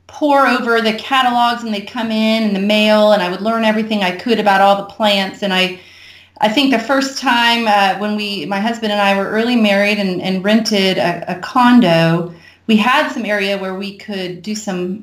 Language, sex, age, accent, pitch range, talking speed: English, female, 30-49, American, 190-235 Hz, 215 wpm